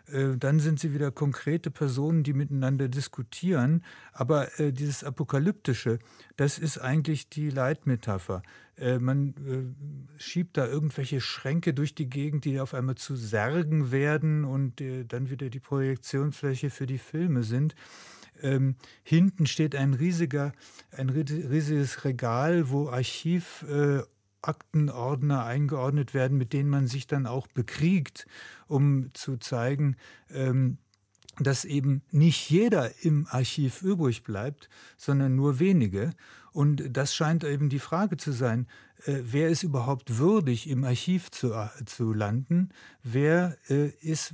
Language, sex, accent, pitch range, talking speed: German, male, German, 130-155 Hz, 135 wpm